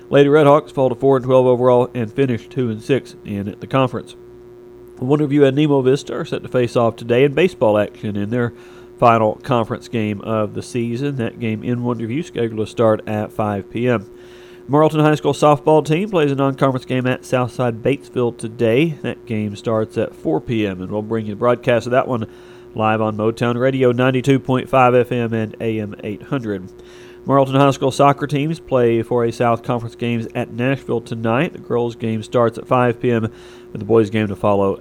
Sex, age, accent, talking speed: male, 40-59, American, 190 wpm